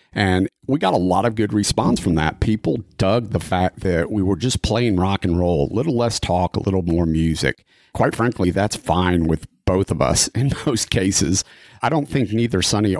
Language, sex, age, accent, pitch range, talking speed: English, male, 40-59, American, 85-110 Hz, 210 wpm